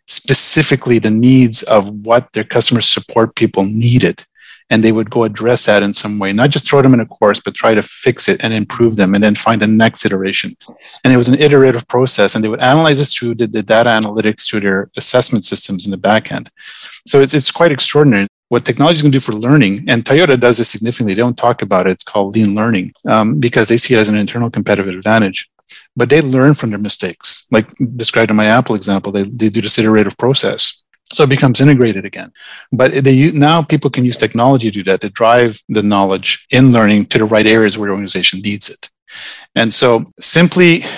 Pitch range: 105-130 Hz